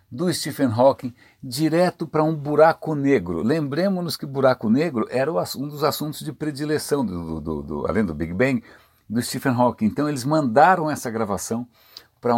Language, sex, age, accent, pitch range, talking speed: Portuguese, male, 60-79, Brazilian, 100-135 Hz, 170 wpm